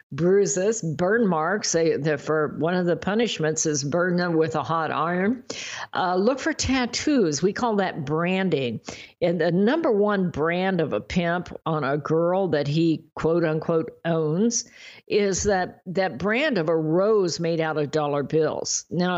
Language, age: English, 50-69